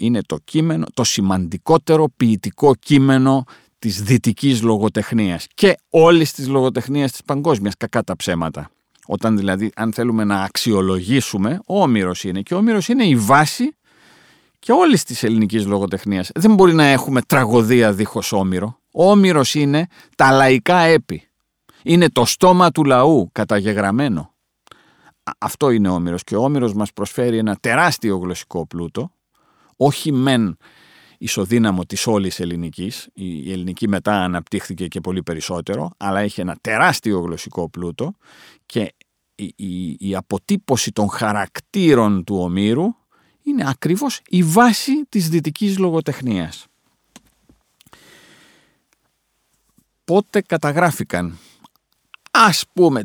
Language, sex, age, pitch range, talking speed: English, male, 50-69, 100-155 Hz, 120 wpm